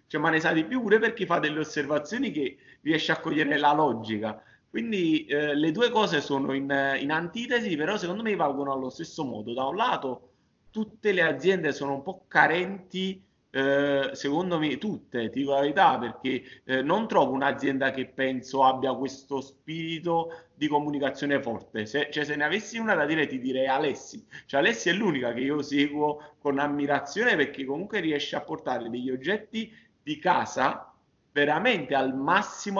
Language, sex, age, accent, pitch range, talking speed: Italian, male, 30-49, native, 130-180 Hz, 165 wpm